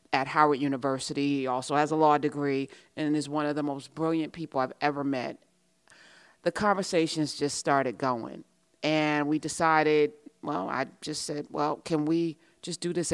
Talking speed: 175 wpm